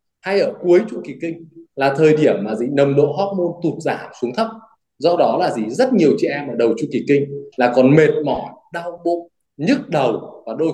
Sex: male